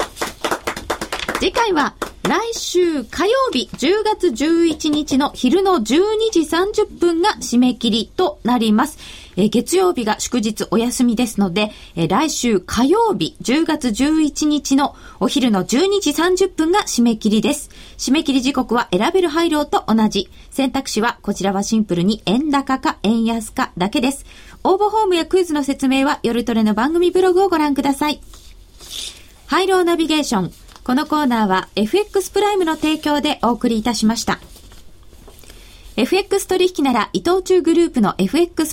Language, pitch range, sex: Japanese, 230-350 Hz, female